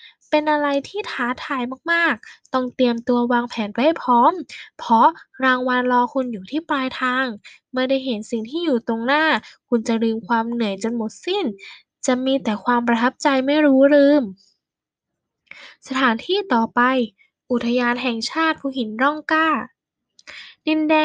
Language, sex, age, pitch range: Thai, female, 10-29, 235-285 Hz